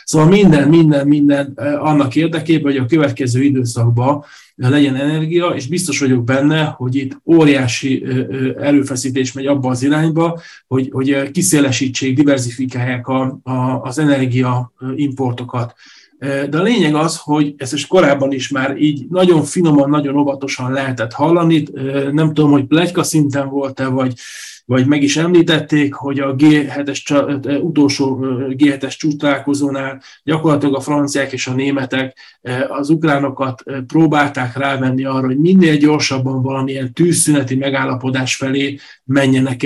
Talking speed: 125 wpm